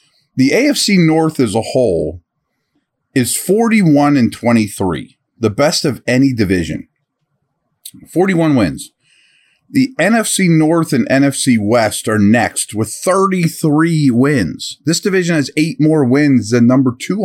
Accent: American